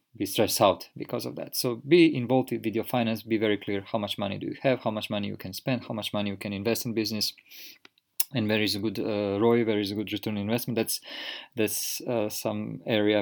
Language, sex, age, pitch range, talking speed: English, male, 20-39, 100-115 Hz, 245 wpm